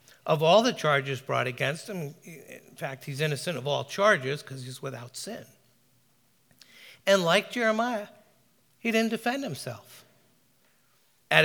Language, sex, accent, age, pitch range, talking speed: English, male, American, 60-79, 140-185 Hz, 135 wpm